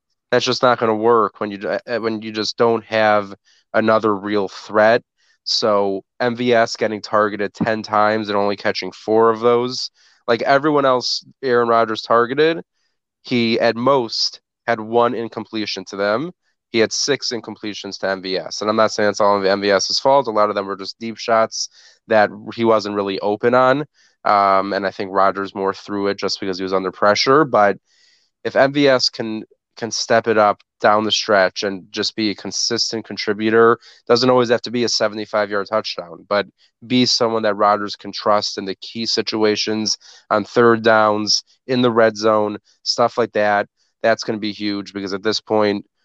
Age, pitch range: 20-39, 105-115 Hz